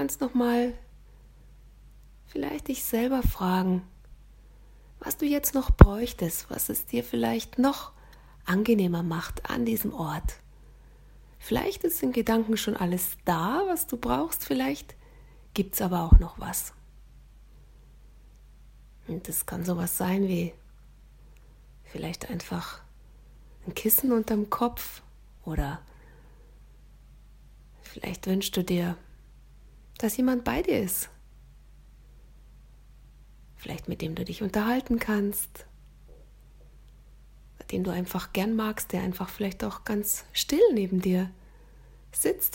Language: German